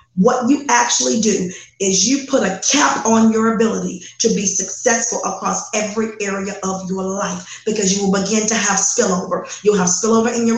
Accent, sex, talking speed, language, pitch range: American, female, 185 wpm, English, 195-225 Hz